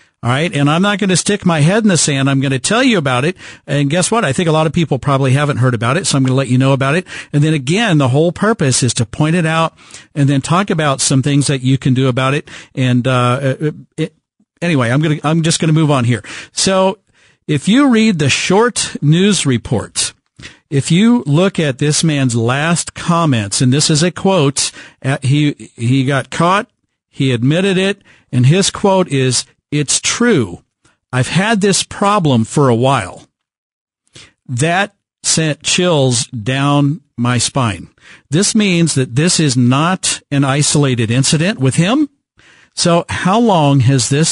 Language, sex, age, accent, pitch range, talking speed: English, male, 50-69, American, 130-170 Hz, 195 wpm